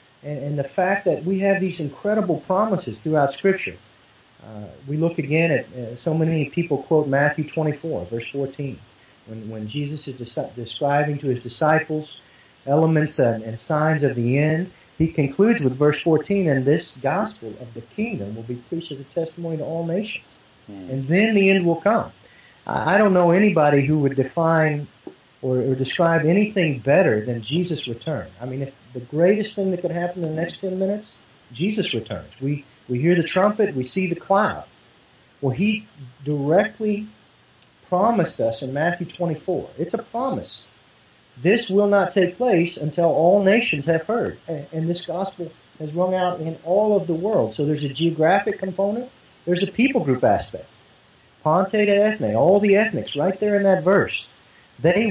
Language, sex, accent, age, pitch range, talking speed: English, male, American, 40-59, 135-190 Hz, 180 wpm